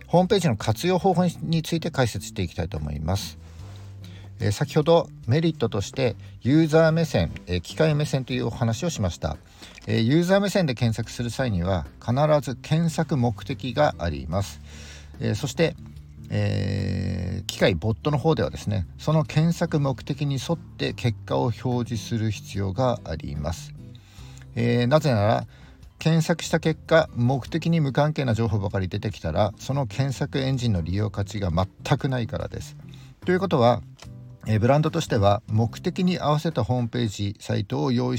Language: Japanese